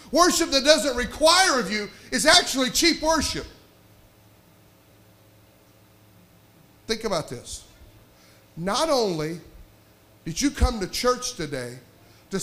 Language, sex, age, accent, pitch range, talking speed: English, male, 40-59, American, 155-245 Hz, 105 wpm